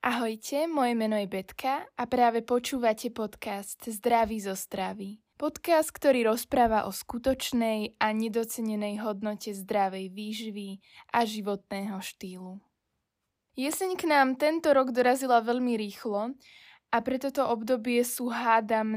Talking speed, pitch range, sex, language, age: 125 wpm, 210-255 Hz, female, Slovak, 10-29